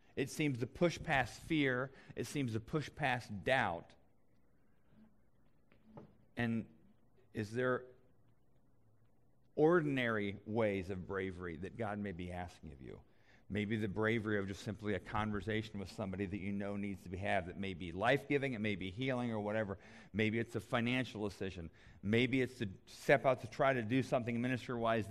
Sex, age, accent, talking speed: male, 40-59, American, 165 wpm